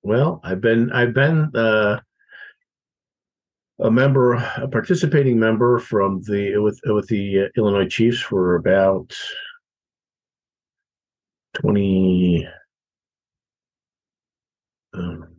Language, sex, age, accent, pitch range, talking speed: English, male, 50-69, American, 90-125 Hz, 90 wpm